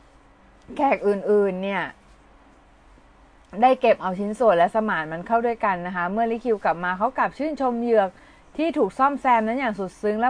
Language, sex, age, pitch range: Thai, female, 20-39, 190-245 Hz